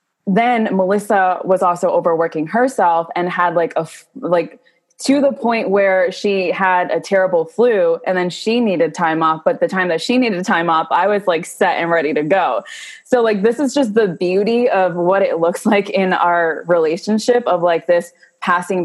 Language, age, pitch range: English, 20-39, 160-190 Hz